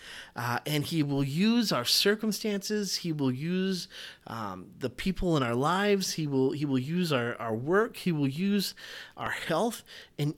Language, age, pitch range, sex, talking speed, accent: English, 30-49, 145-195 Hz, male, 175 wpm, American